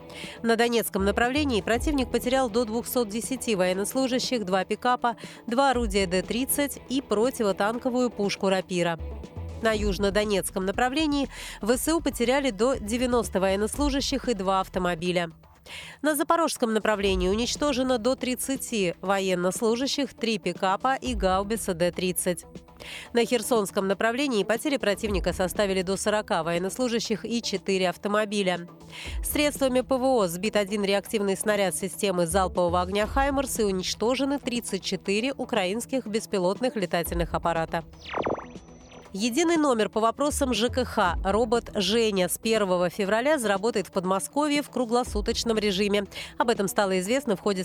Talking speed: 115 wpm